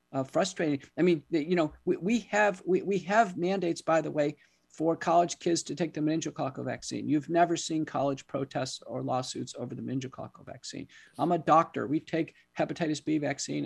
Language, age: English, 50-69